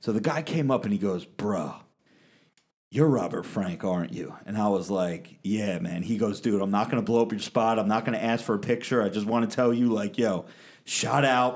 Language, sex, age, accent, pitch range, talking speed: English, male, 30-49, American, 110-145 Hz, 255 wpm